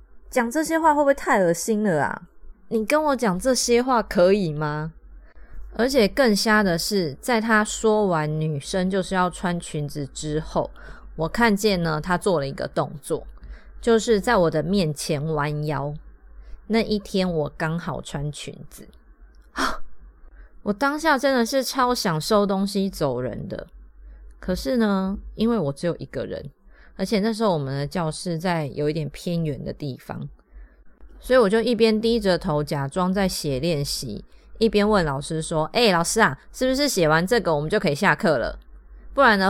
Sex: female